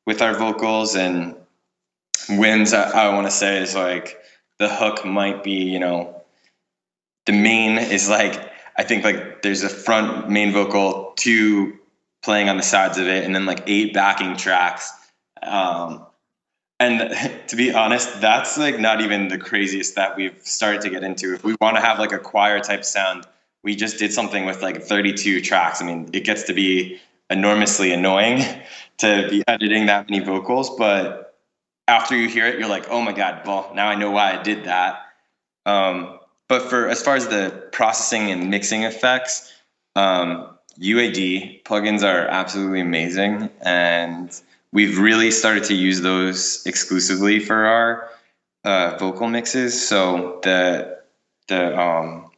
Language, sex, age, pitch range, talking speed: English, male, 20-39, 95-110 Hz, 165 wpm